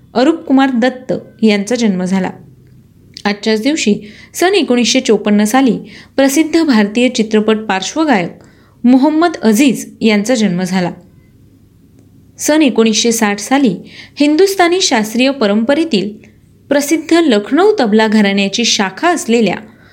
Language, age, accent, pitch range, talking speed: Marathi, 20-39, native, 210-275 Hz, 100 wpm